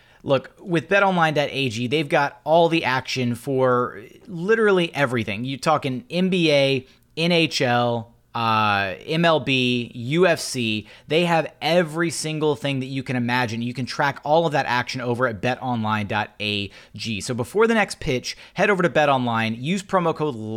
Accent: American